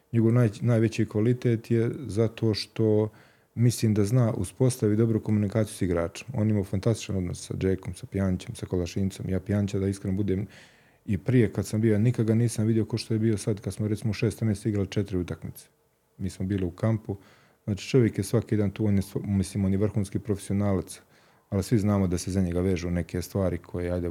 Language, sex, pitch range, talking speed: Croatian, male, 95-110 Hz, 200 wpm